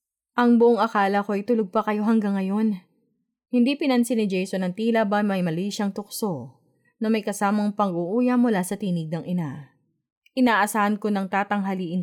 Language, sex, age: Filipino, female, 20-39